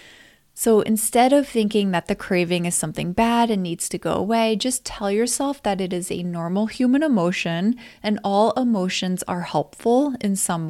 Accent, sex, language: American, female, English